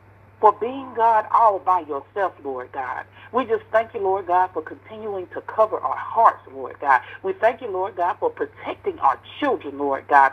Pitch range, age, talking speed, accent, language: 175-250 Hz, 50-69, 190 wpm, American, English